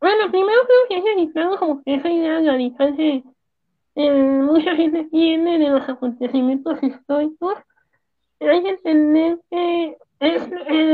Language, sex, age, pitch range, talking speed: Spanish, female, 20-39, 295-390 Hz, 135 wpm